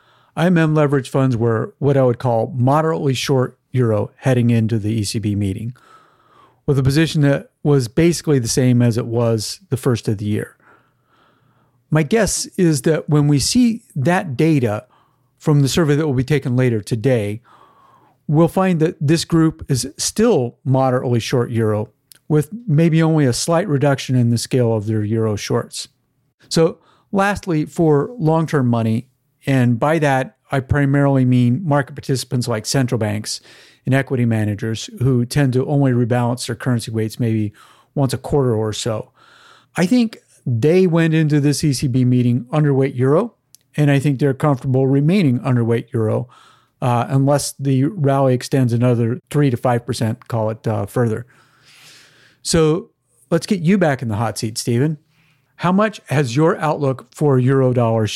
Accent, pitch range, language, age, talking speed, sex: American, 120-150 Hz, English, 40-59, 160 wpm, male